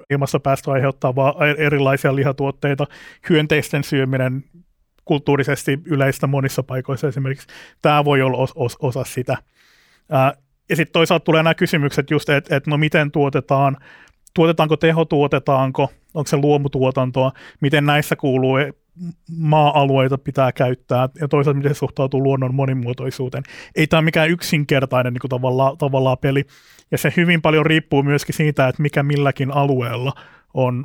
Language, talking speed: Finnish, 130 wpm